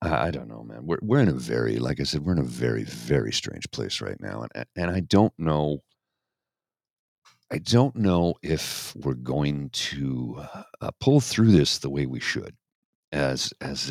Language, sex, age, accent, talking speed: English, male, 50-69, American, 185 wpm